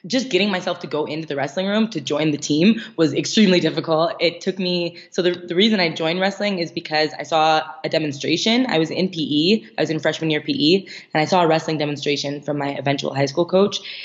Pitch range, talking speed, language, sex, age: 150-185 Hz, 230 wpm, English, female, 20-39